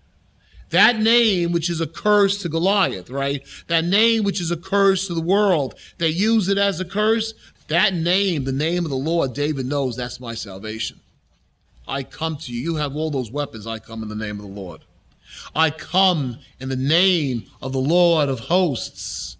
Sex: male